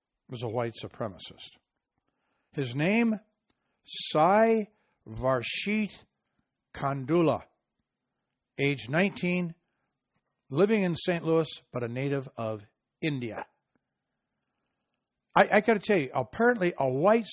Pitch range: 125-175 Hz